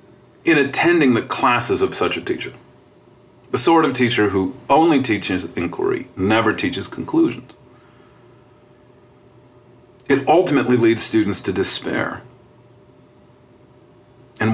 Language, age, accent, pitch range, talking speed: English, 40-59, American, 115-130 Hz, 105 wpm